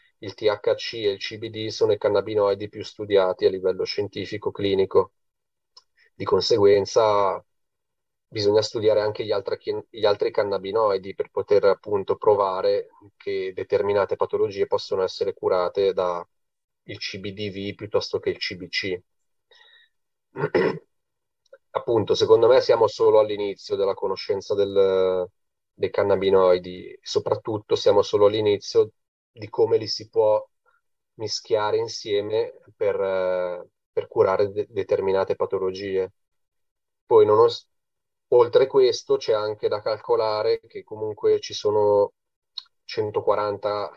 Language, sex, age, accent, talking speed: Italian, male, 30-49, native, 105 wpm